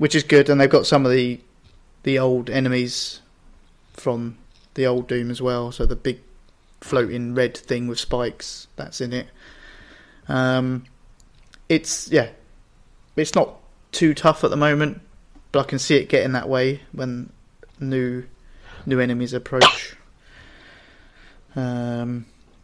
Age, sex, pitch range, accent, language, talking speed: 20-39, male, 125-140 Hz, British, English, 140 wpm